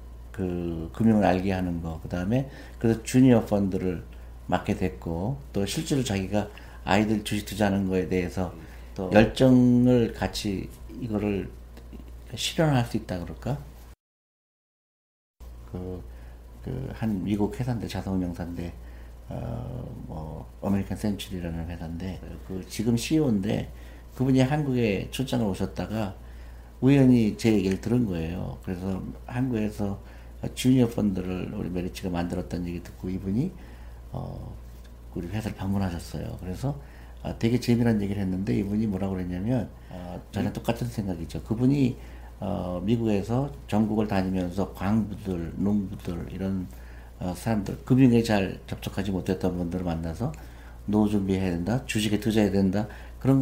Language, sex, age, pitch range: Korean, male, 50-69, 85-115 Hz